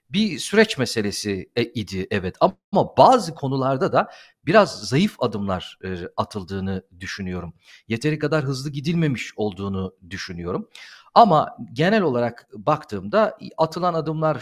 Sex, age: male, 50-69